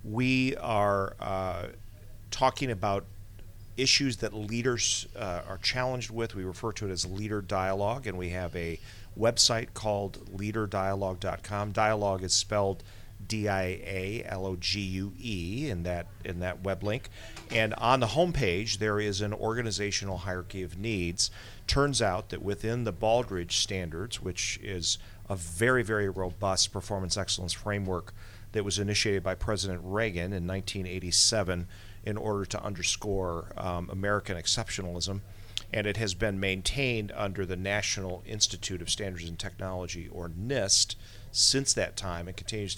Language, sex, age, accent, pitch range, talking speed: English, male, 40-59, American, 95-110 Hz, 140 wpm